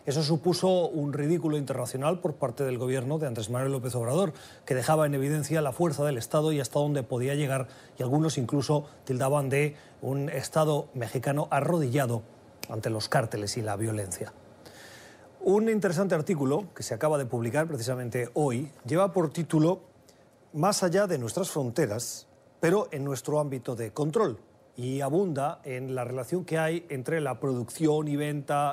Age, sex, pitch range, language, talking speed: 30-49, male, 130-165 Hz, Spanish, 165 wpm